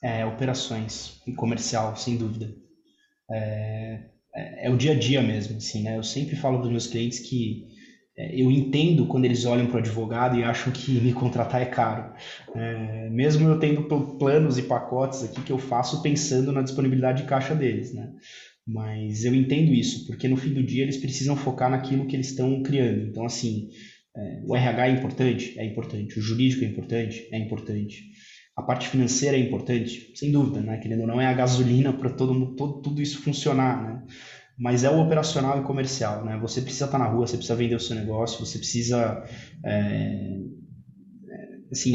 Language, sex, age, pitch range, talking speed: Portuguese, male, 20-39, 115-140 Hz, 190 wpm